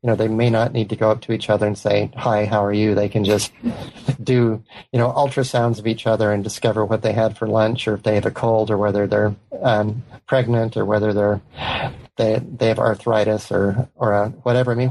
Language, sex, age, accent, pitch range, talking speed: English, male, 30-49, American, 105-125 Hz, 235 wpm